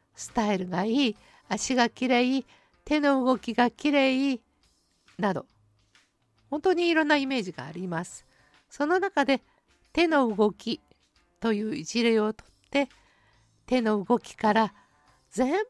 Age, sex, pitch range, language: 50-69, female, 185-255 Hz, Japanese